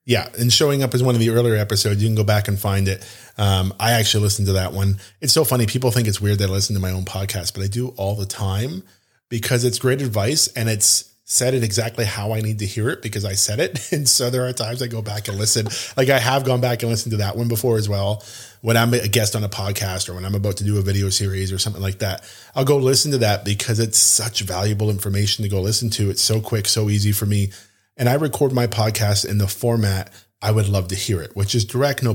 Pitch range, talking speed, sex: 100-120 Hz, 270 wpm, male